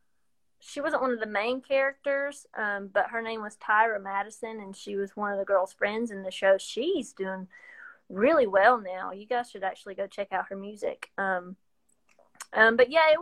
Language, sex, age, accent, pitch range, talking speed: English, female, 20-39, American, 195-270 Hz, 200 wpm